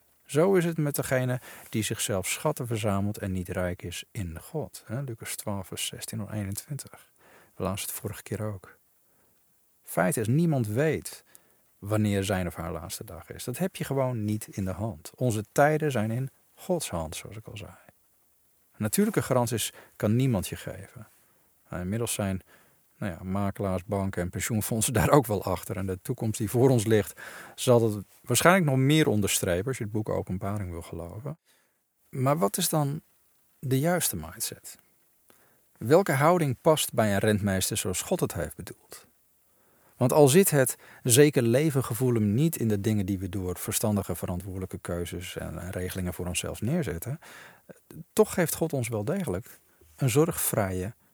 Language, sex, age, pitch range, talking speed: Dutch, male, 50-69, 95-135 Hz, 165 wpm